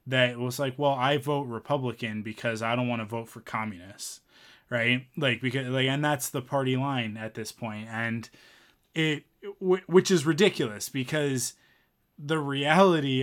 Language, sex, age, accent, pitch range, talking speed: English, male, 20-39, American, 115-140 Hz, 160 wpm